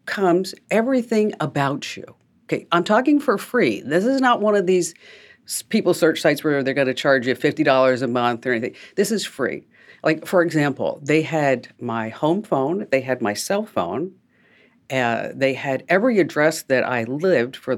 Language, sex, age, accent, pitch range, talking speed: English, female, 50-69, American, 135-185 Hz, 175 wpm